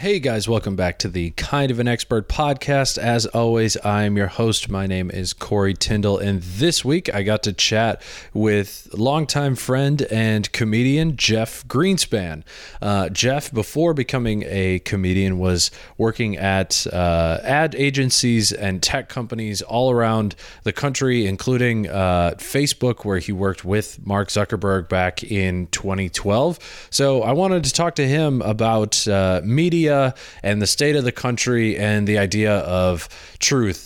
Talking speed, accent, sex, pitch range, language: 155 wpm, American, male, 95-120 Hz, English